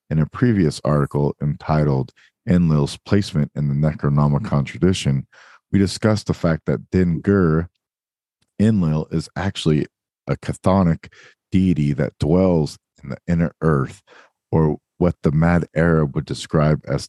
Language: English